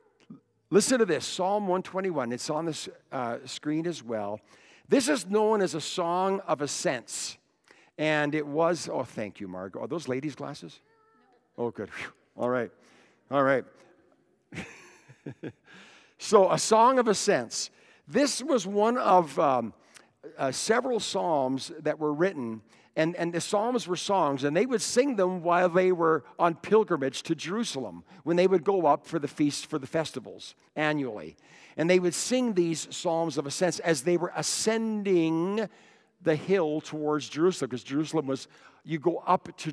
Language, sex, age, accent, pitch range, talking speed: English, male, 60-79, American, 155-215 Hz, 160 wpm